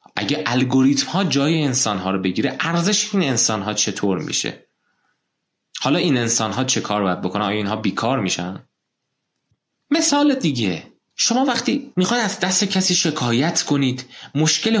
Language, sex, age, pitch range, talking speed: Persian, male, 30-49, 110-165 Hz, 150 wpm